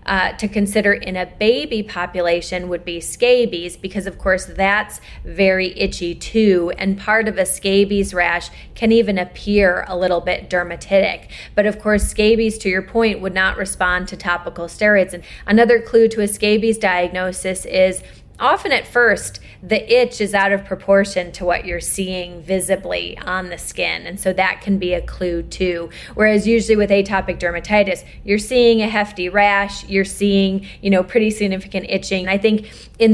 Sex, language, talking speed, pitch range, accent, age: female, English, 175 wpm, 185-220 Hz, American, 30-49